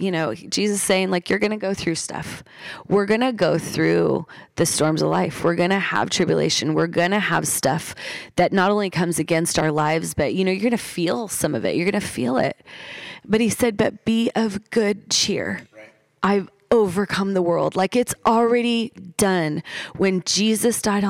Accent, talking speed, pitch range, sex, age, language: American, 200 wpm, 170-200 Hz, female, 30-49, English